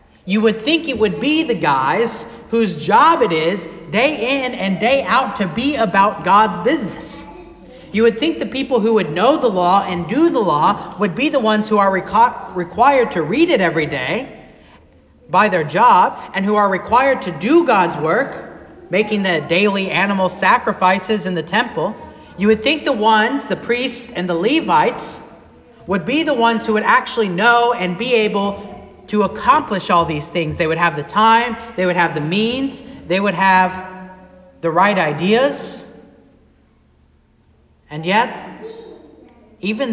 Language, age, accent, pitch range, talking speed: English, 40-59, American, 170-230 Hz, 170 wpm